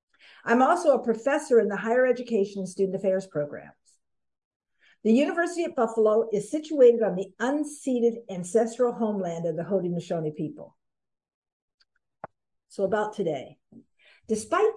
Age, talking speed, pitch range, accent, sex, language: 50-69, 120 wpm, 195-250 Hz, American, female, English